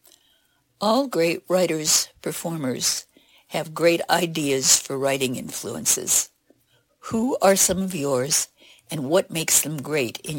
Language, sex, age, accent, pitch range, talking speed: English, female, 60-79, American, 140-185 Hz, 120 wpm